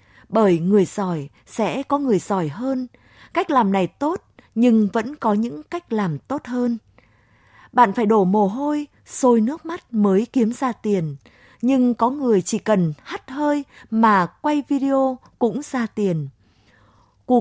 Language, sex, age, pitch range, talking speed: Vietnamese, female, 20-39, 185-255 Hz, 160 wpm